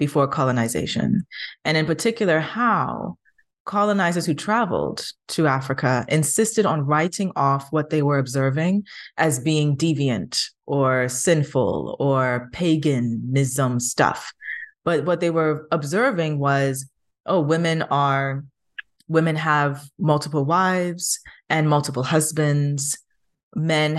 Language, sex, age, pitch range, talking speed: English, female, 20-39, 135-160 Hz, 110 wpm